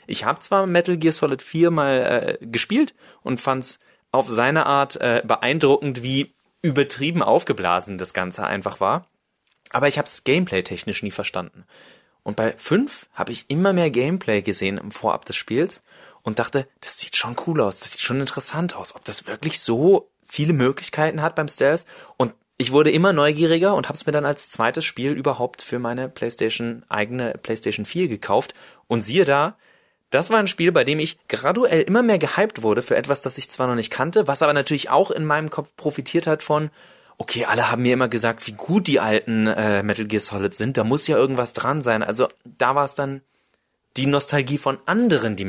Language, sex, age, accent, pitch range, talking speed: German, male, 30-49, German, 115-165 Hz, 200 wpm